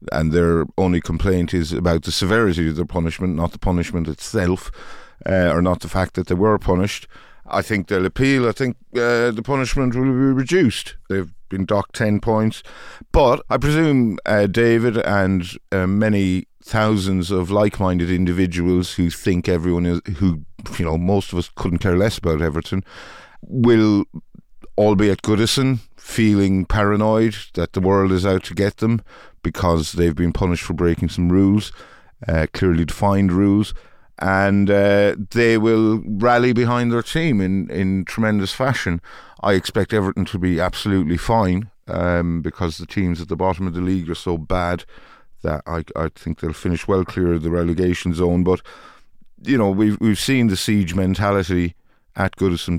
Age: 50-69